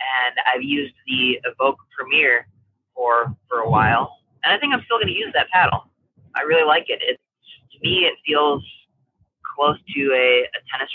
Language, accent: English, American